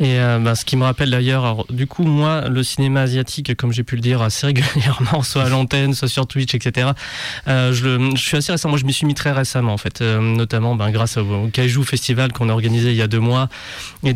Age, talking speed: 20-39, 265 wpm